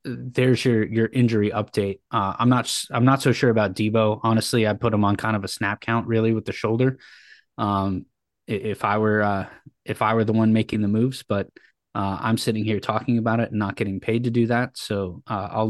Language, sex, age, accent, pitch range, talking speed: English, male, 20-39, American, 105-120 Hz, 230 wpm